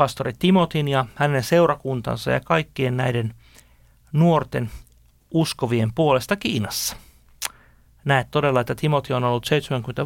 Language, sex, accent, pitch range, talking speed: Finnish, male, native, 115-150 Hz, 115 wpm